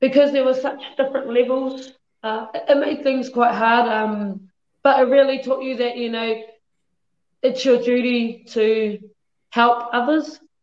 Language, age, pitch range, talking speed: English, 20-39, 215-245 Hz, 150 wpm